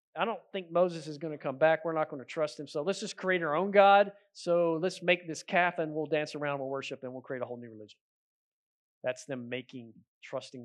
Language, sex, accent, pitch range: English, male, American, 120-155 Hz